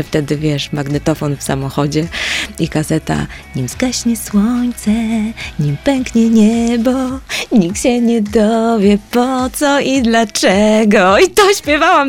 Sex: female